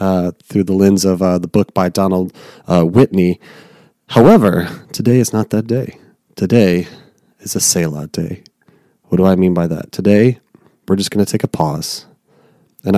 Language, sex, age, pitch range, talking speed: English, male, 30-49, 90-110 Hz, 175 wpm